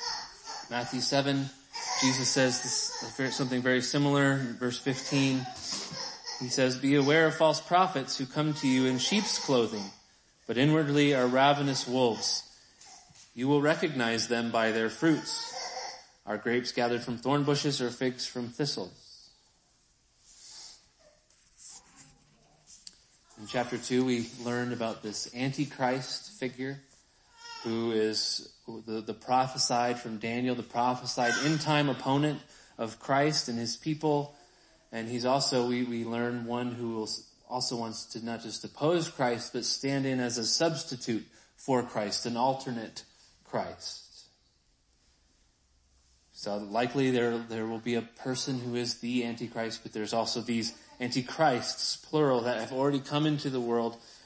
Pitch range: 115-140 Hz